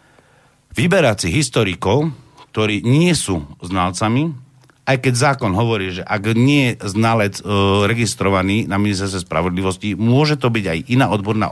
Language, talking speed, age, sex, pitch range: Slovak, 135 wpm, 60-79, male, 100-140 Hz